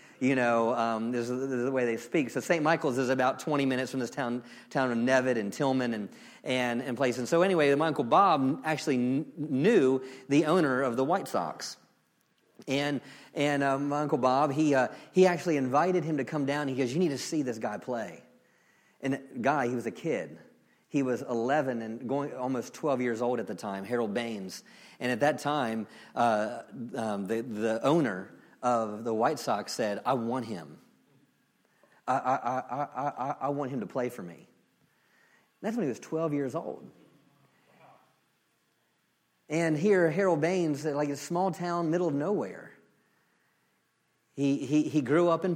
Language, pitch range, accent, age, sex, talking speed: English, 125-160 Hz, American, 40-59, male, 185 wpm